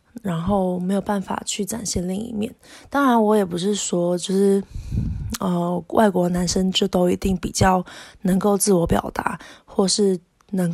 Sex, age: female, 20-39